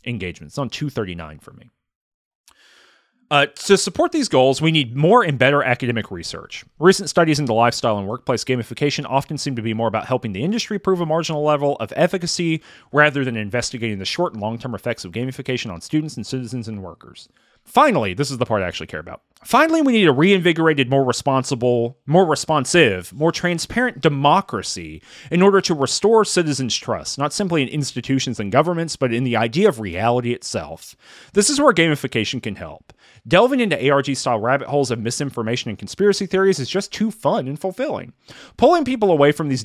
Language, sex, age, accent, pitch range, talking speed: English, male, 30-49, American, 120-165 Hz, 190 wpm